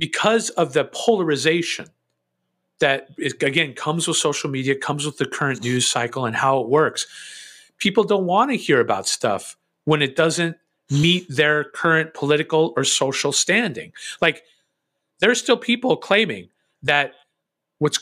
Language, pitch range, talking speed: English, 145-200 Hz, 150 wpm